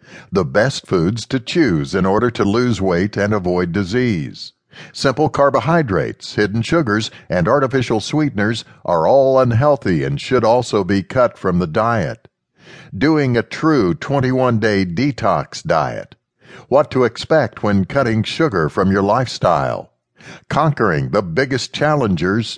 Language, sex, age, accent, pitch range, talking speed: English, male, 60-79, American, 105-140 Hz, 135 wpm